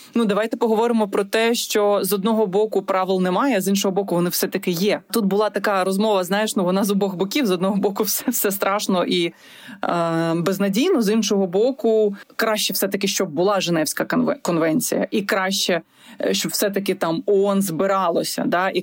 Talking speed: 175 wpm